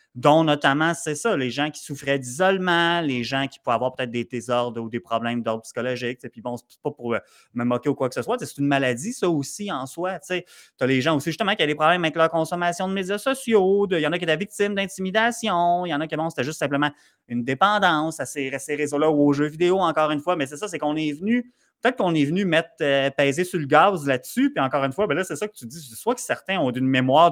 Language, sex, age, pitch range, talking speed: French, male, 30-49, 130-170 Hz, 270 wpm